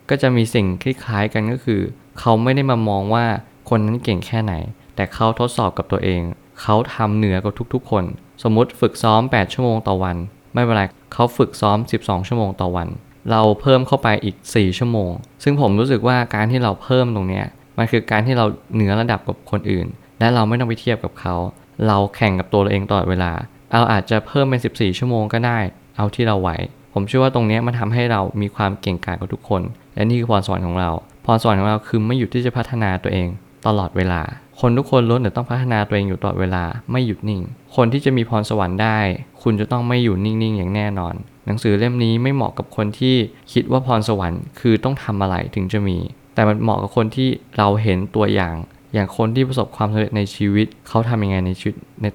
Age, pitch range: 20-39, 100-125 Hz